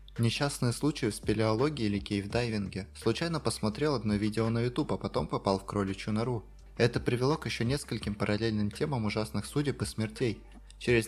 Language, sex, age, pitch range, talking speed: Russian, male, 20-39, 100-125 Hz, 160 wpm